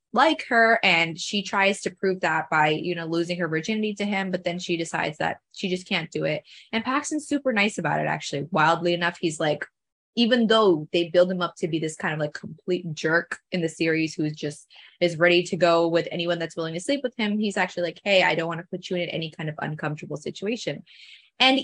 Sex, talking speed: female, 235 wpm